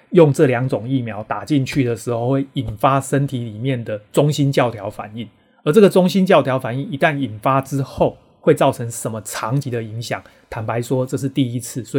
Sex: male